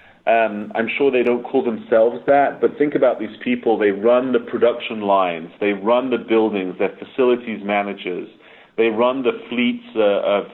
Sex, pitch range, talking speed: male, 105-135 Hz, 175 wpm